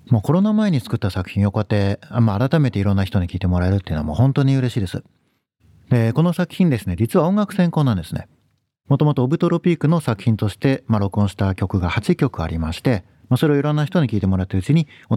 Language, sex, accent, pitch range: Japanese, male, native, 100-155 Hz